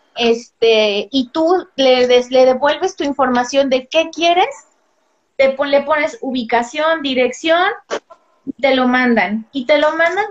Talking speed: 145 wpm